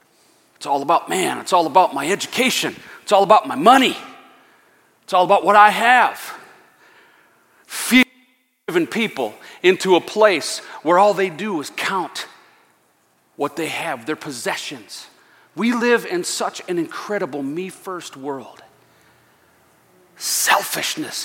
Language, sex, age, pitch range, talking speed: English, male, 40-59, 195-325 Hz, 125 wpm